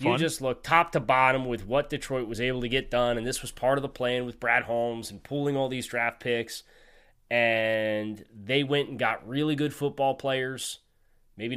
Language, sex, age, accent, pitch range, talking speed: English, male, 20-39, American, 110-140 Hz, 205 wpm